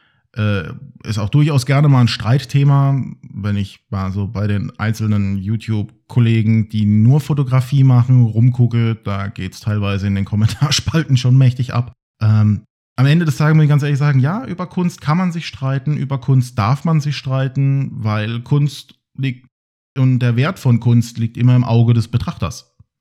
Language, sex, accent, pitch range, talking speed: German, male, German, 105-145 Hz, 175 wpm